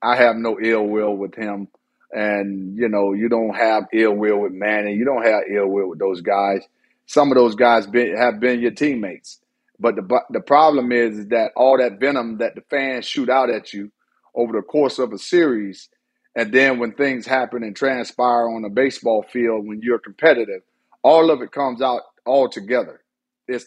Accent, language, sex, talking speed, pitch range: American, English, male, 200 wpm, 115-140 Hz